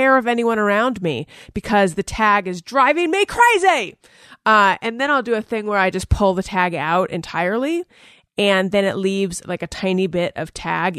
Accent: American